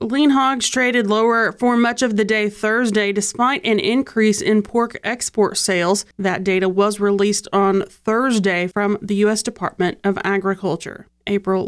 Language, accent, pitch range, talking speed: English, American, 195-230 Hz, 155 wpm